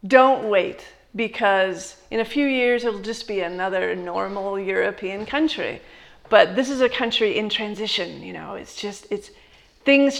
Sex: female